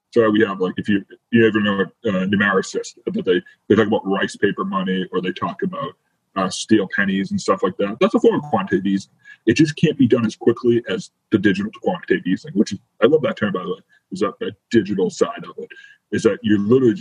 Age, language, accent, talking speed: 30-49, English, American, 240 wpm